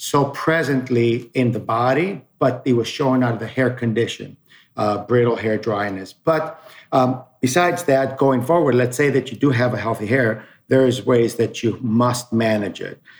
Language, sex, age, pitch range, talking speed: English, male, 50-69, 120-140 Hz, 185 wpm